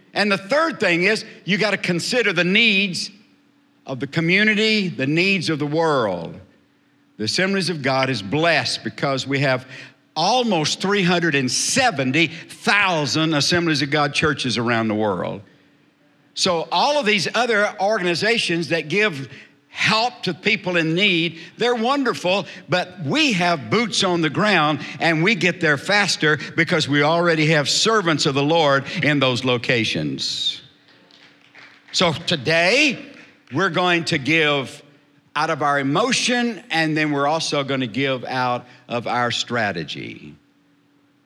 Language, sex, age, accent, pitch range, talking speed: English, male, 60-79, American, 145-195 Hz, 135 wpm